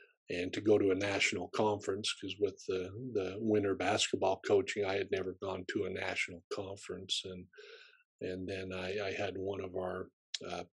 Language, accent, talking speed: English, American, 180 wpm